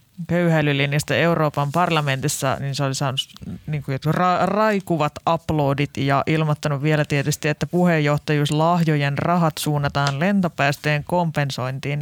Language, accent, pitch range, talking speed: Finnish, native, 140-165 Hz, 110 wpm